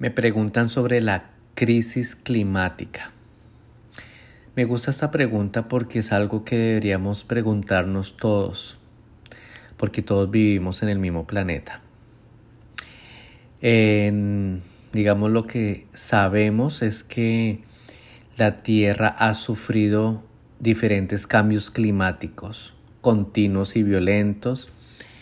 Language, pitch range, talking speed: Spanish, 100-115 Hz, 95 wpm